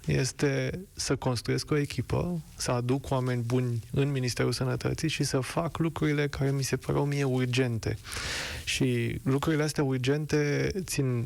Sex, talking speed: male, 145 wpm